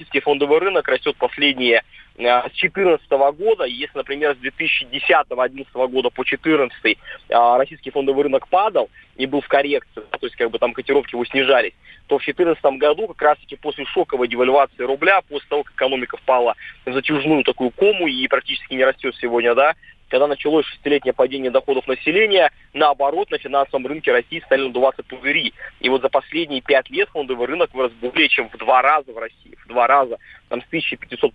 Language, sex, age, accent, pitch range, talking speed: Russian, male, 20-39, native, 130-175 Hz, 175 wpm